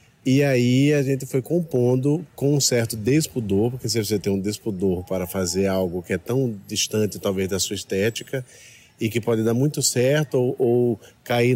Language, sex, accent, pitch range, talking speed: Portuguese, male, Brazilian, 95-120 Hz, 185 wpm